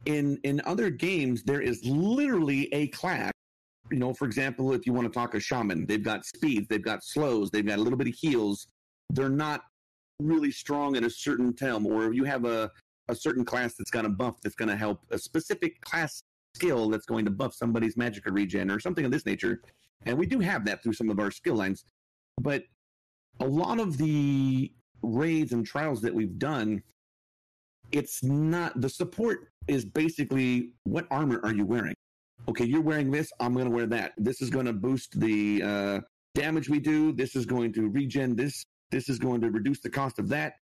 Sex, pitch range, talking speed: male, 110-140 Hz, 205 wpm